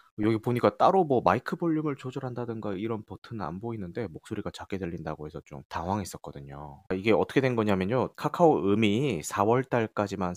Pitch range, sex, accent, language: 100-155 Hz, male, native, Korean